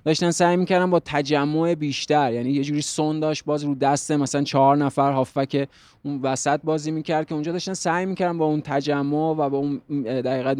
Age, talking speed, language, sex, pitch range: 20-39, 190 wpm, Persian, male, 140-160 Hz